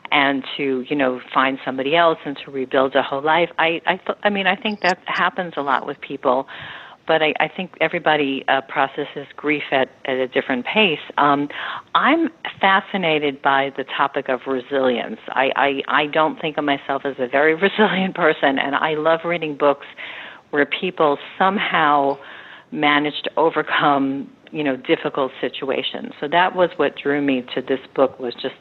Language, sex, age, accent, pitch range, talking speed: English, female, 50-69, American, 135-170 Hz, 180 wpm